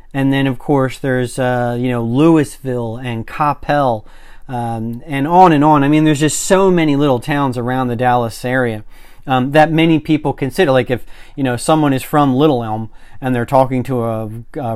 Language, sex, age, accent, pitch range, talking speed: English, male, 40-59, American, 120-145 Hz, 195 wpm